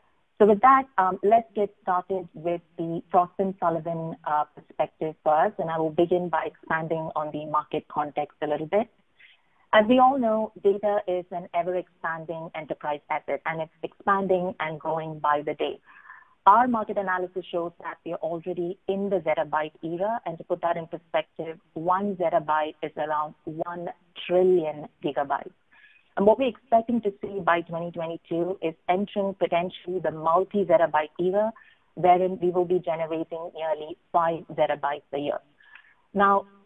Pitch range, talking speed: 160-195 Hz, 155 wpm